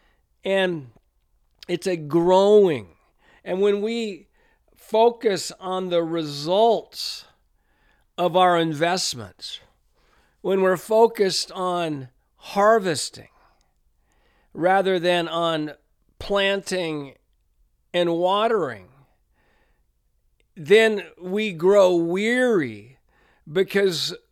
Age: 50-69